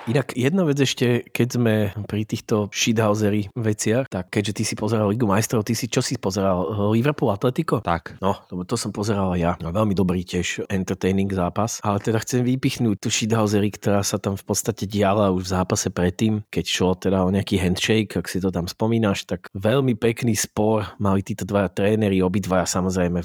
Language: Slovak